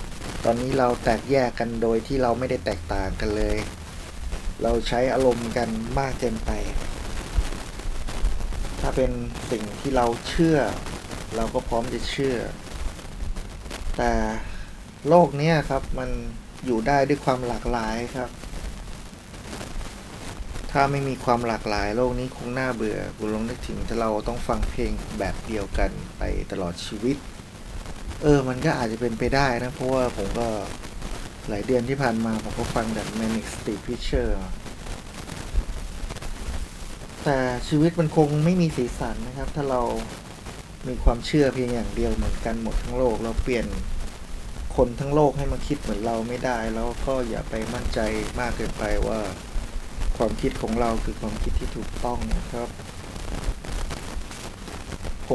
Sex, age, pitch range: male, 20-39, 105-130 Hz